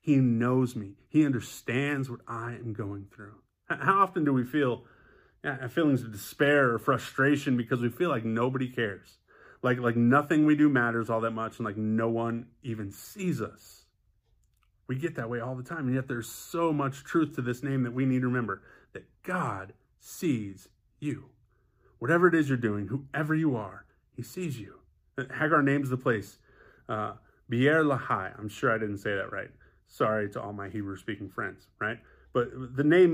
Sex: male